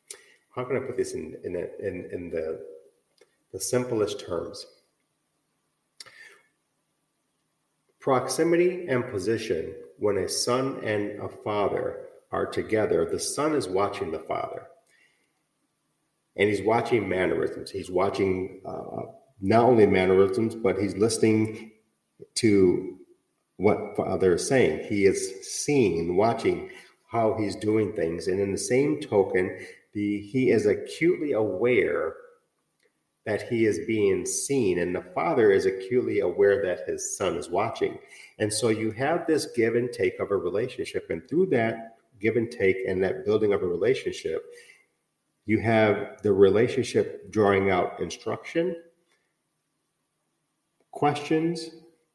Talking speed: 130 wpm